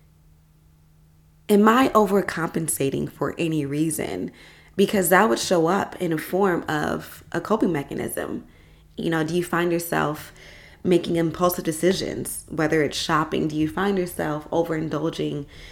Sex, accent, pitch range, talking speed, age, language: female, American, 140-190 Hz, 135 wpm, 20-39, English